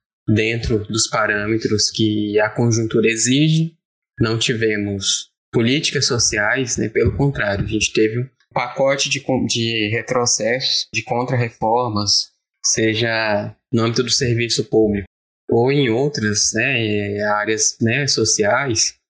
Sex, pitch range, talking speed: male, 110-130 Hz, 115 wpm